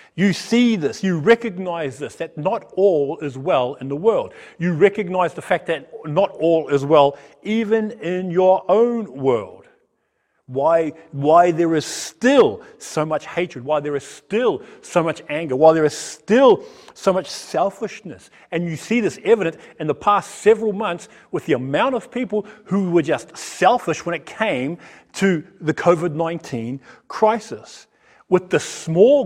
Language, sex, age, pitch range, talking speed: English, male, 40-59, 160-225 Hz, 160 wpm